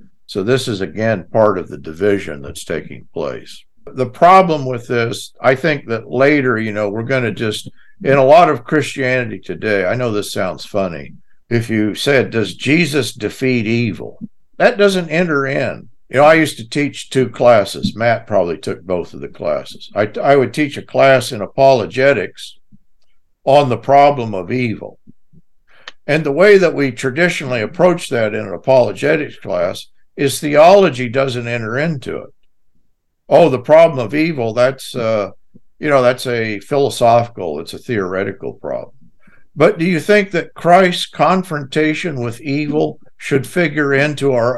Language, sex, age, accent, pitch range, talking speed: English, male, 50-69, American, 115-155 Hz, 165 wpm